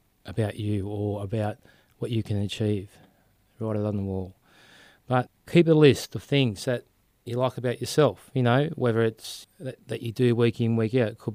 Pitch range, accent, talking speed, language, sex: 110-125 Hz, Australian, 200 wpm, English, male